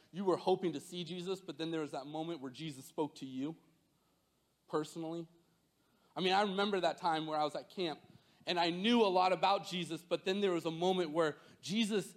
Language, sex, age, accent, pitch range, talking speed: English, male, 30-49, American, 145-175 Hz, 215 wpm